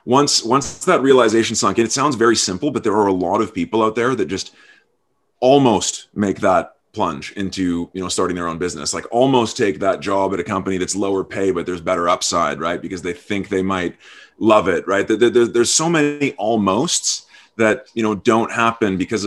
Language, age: English, 30-49